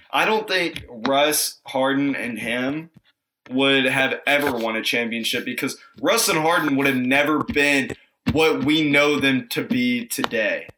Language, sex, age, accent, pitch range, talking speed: English, male, 20-39, American, 140-230 Hz, 155 wpm